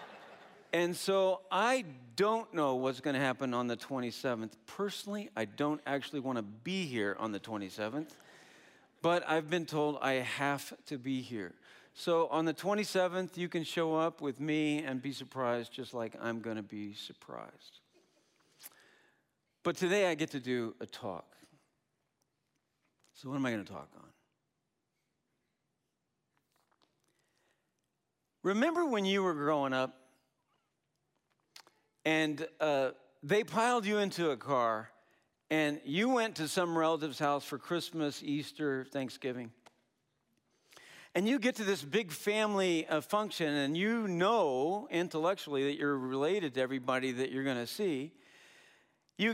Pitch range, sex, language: 130-185 Hz, male, English